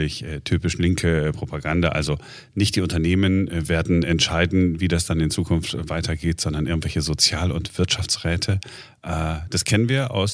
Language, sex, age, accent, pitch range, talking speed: German, male, 40-59, German, 85-115 Hz, 140 wpm